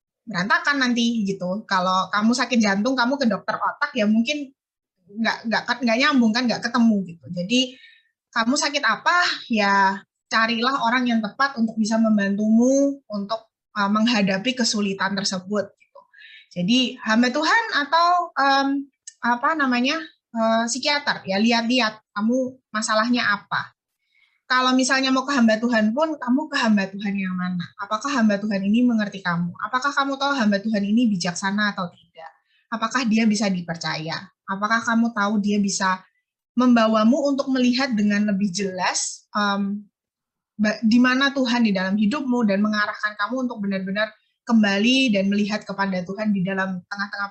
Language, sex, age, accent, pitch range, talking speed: Indonesian, female, 20-39, native, 200-255 Hz, 145 wpm